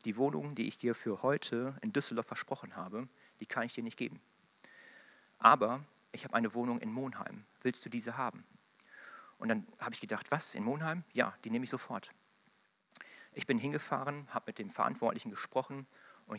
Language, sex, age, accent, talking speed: German, male, 40-59, German, 185 wpm